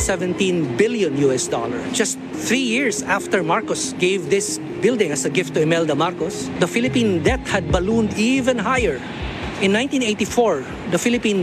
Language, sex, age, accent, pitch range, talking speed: English, male, 50-69, Filipino, 175-225 Hz, 150 wpm